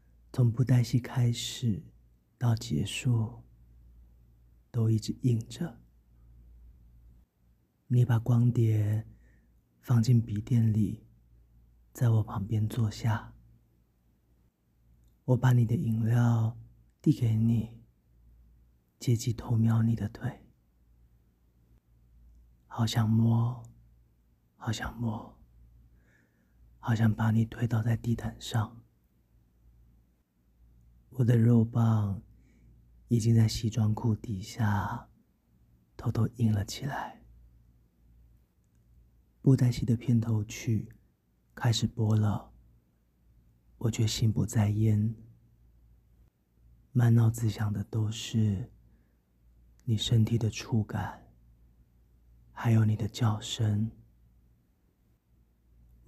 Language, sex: Chinese, male